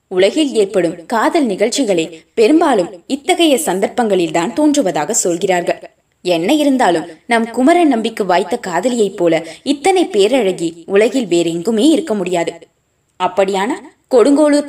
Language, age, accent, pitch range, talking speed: Tamil, 20-39, native, 175-255 Hz, 80 wpm